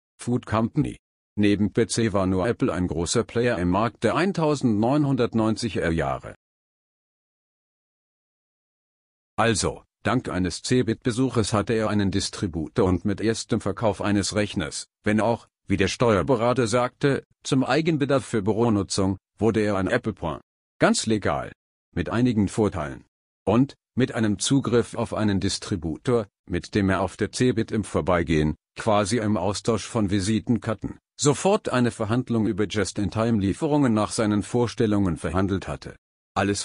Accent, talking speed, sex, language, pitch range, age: German, 130 wpm, male, German, 95-120 Hz, 50-69